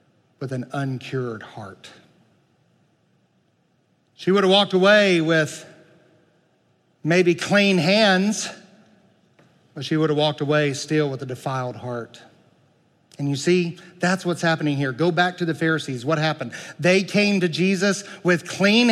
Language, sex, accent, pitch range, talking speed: English, male, American, 140-200 Hz, 140 wpm